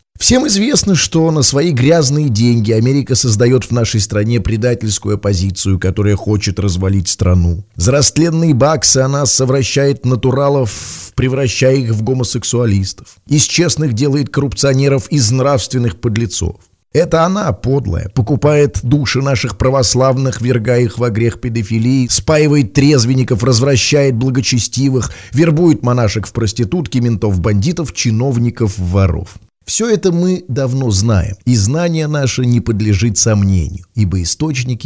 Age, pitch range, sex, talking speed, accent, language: 20-39, 105-140 Hz, male, 125 wpm, native, Russian